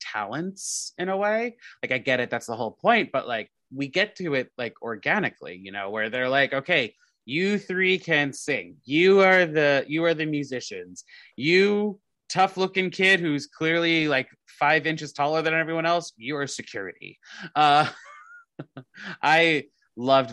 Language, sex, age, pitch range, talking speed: English, male, 20-39, 130-175 Hz, 165 wpm